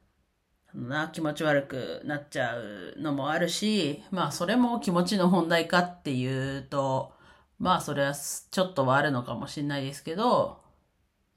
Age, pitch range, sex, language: 40-59, 130-165 Hz, female, Japanese